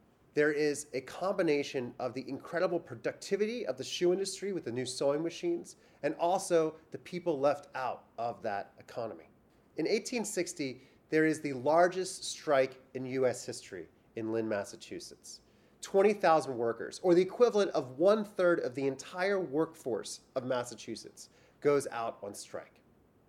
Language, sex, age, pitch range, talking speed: English, male, 30-49, 135-185 Hz, 145 wpm